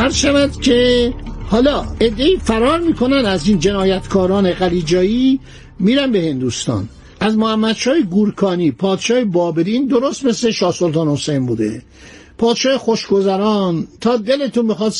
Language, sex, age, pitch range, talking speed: Persian, male, 60-79, 180-235 Hz, 110 wpm